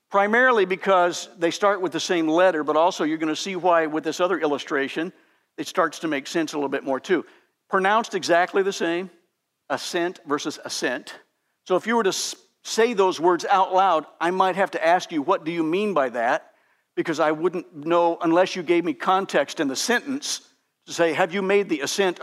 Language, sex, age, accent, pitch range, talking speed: English, male, 60-79, American, 160-200 Hz, 210 wpm